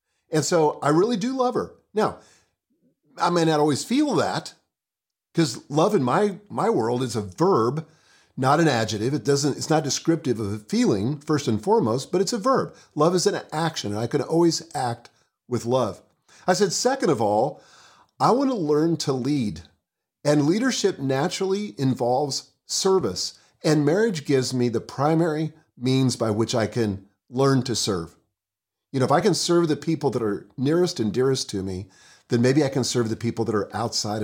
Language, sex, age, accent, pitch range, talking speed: English, male, 50-69, American, 120-170 Hz, 190 wpm